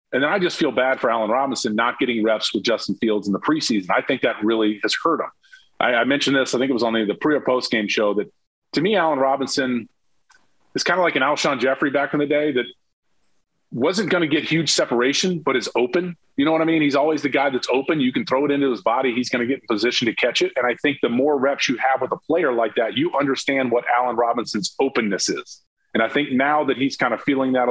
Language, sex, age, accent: English, male, 40-59, American